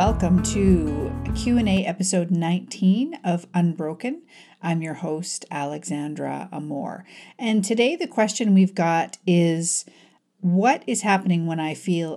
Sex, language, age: female, English, 40-59